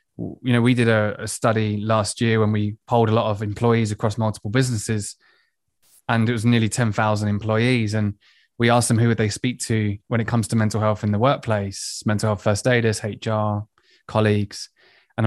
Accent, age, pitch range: British, 20-39, 105-125 Hz